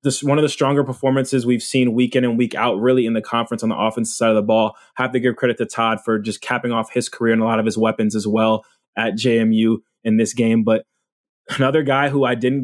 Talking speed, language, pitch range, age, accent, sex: 260 wpm, English, 115-130 Hz, 20-39, American, male